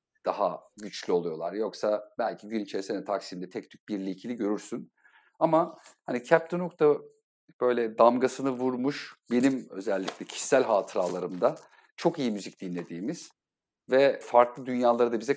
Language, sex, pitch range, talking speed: Turkish, male, 115-150 Hz, 130 wpm